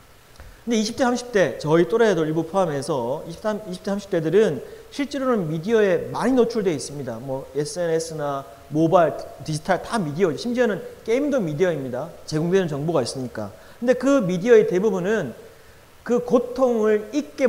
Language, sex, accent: Korean, male, native